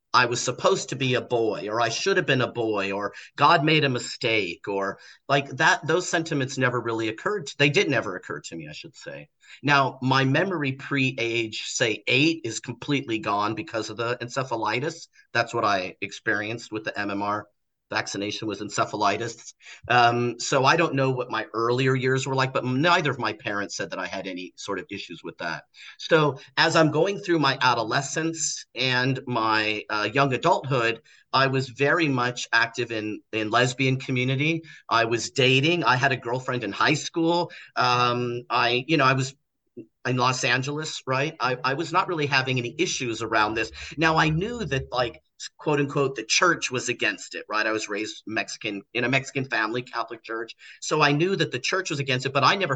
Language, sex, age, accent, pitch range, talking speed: English, male, 40-59, American, 115-140 Hz, 195 wpm